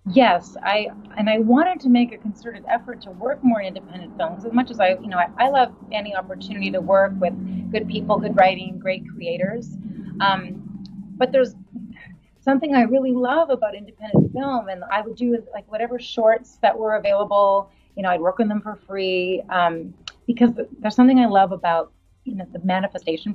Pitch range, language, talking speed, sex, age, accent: 185-230 Hz, English, 190 wpm, female, 30-49, American